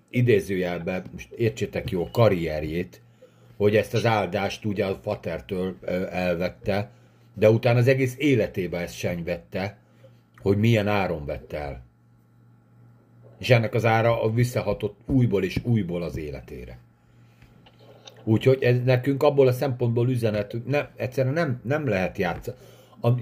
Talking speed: 125 wpm